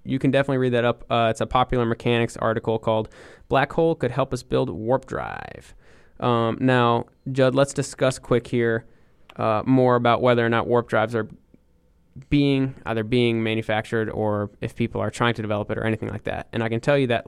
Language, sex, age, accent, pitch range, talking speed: English, male, 20-39, American, 110-125 Hz, 205 wpm